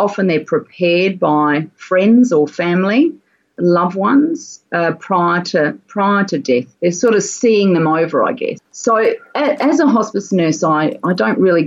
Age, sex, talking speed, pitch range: 40-59, female, 170 wpm, 160-235 Hz